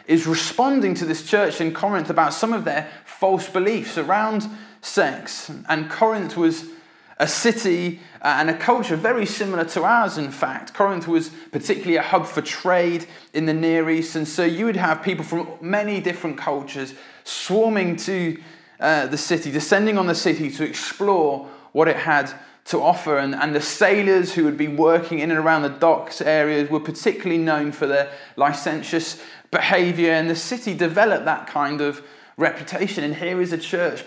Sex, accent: male, British